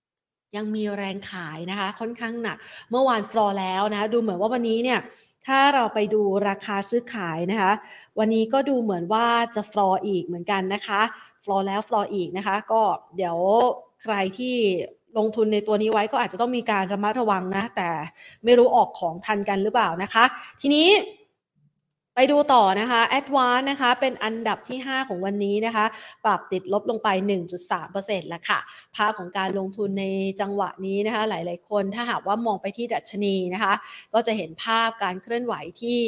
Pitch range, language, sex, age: 195-240 Hz, Thai, female, 30-49